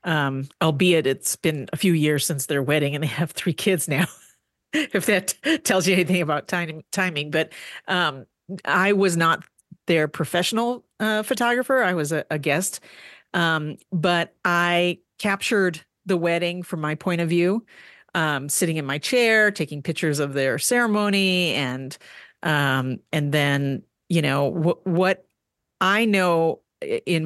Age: 40-59